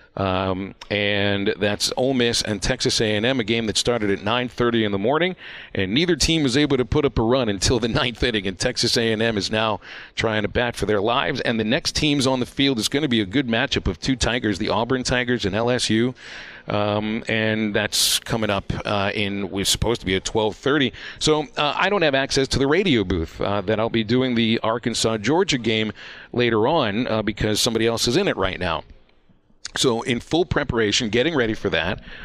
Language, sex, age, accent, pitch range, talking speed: English, male, 40-59, American, 100-125 Hz, 210 wpm